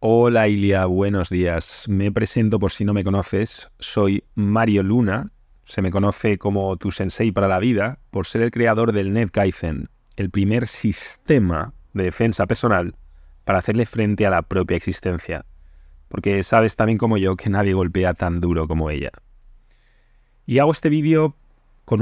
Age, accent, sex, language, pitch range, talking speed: 30-49, Spanish, male, English, 95-125 Hz, 160 wpm